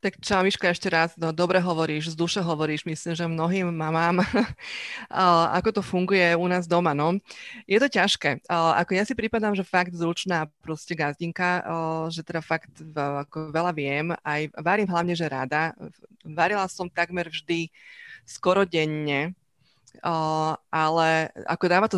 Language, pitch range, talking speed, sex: Slovak, 160-180 Hz, 150 wpm, female